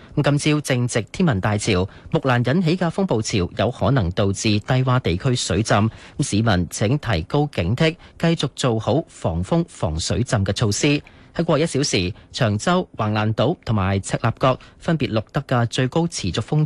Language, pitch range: Chinese, 105-145 Hz